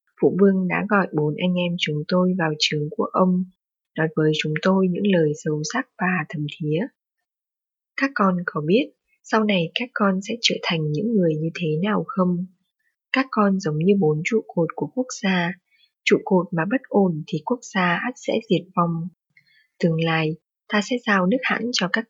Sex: female